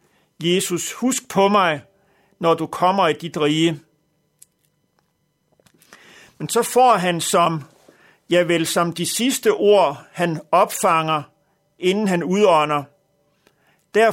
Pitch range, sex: 160-195 Hz, male